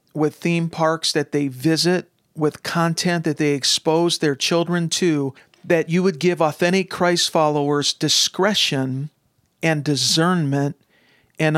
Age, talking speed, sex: 50-69, 130 wpm, male